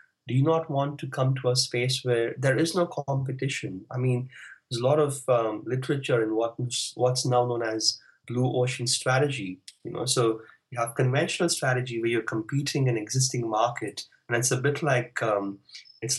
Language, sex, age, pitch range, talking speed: English, male, 20-39, 115-145 Hz, 190 wpm